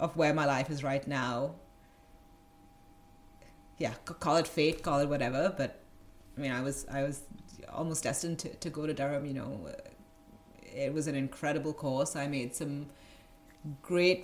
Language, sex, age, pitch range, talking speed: English, female, 30-49, 140-185 Hz, 165 wpm